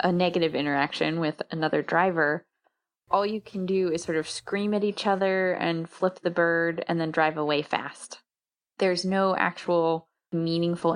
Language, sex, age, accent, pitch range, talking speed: English, female, 10-29, American, 155-185 Hz, 165 wpm